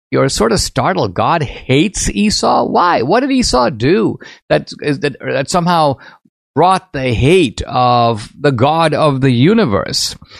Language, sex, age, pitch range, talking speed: English, male, 50-69, 125-180 Hz, 150 wpm